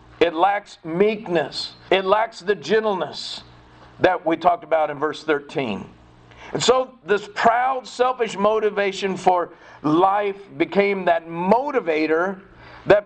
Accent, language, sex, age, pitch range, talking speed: American, English, male, 50-69, 165-220 Hz, 120 wpm